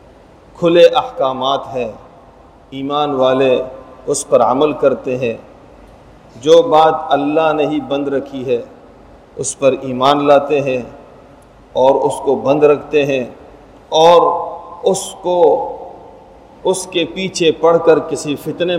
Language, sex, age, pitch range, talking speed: Urdu, male, 50-69, 140-170 Hz, 125 wpm